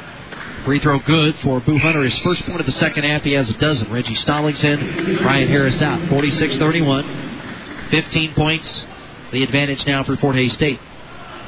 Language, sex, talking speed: English, male, 175 wpm